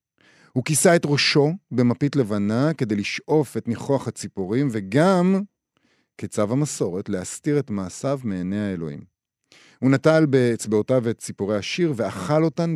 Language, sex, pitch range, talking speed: Hebrew, male, 105-135 Hz, 125 wpm